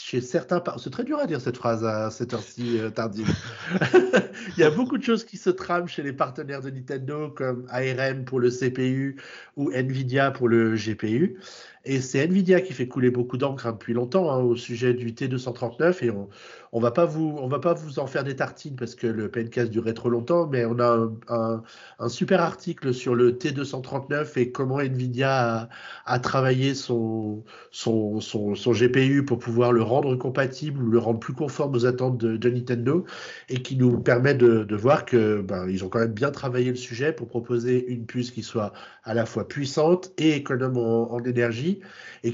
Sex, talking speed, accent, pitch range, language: male, 200 wpm, French, 115-145 Hz, French